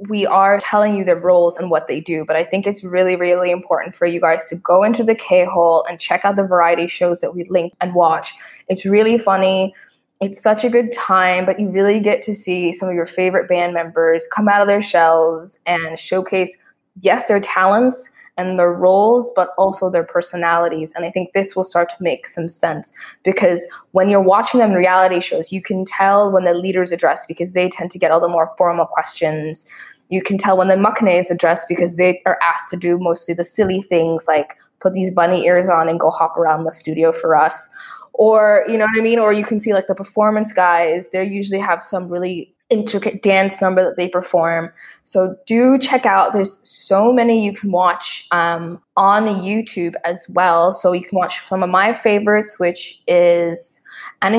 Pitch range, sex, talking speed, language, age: 175-210 Hz, female, 210 wpm, English, 20-39